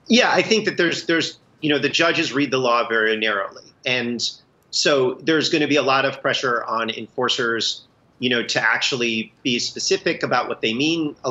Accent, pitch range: American, 115-145 Hz